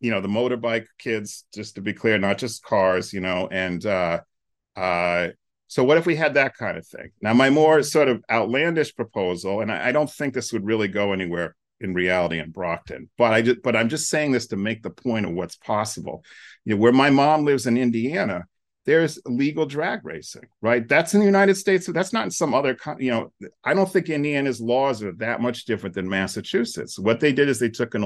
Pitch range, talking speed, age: 100-130 Hz, 230 wpm, 40-59